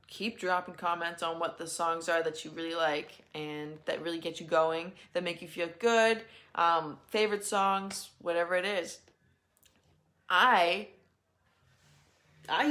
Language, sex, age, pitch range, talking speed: English, female, 20-39, 170-225 Hz, 145 wpm